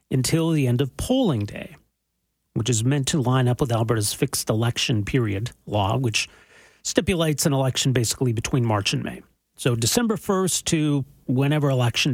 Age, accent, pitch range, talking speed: 40-59, American, 120-160 Hz, 165 wpm